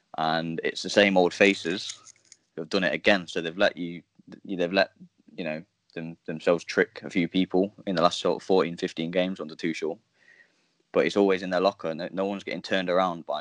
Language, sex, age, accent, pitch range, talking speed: English, male, 10-29, British, 85-100 Hz, 230 wpm